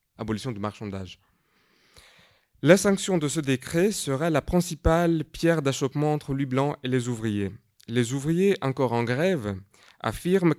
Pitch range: 110-150 Hz